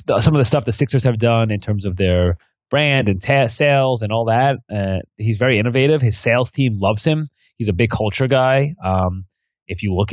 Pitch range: 95-120 Hz